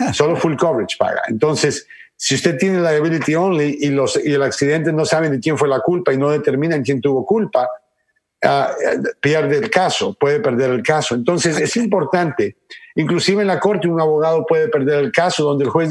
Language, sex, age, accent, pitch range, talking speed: Spanish, male, 50-69, Mexican, 150-200 Hz, 195 wpm